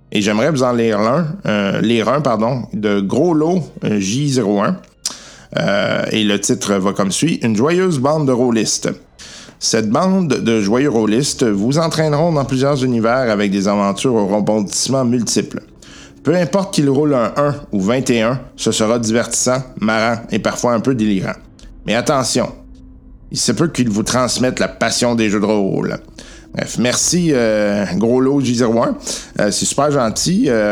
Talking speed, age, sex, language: 160 wpm, 50-69, male, French